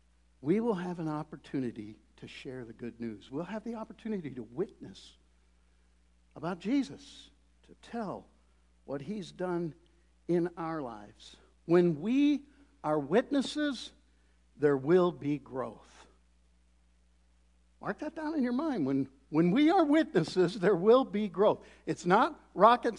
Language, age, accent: English, 60-79, American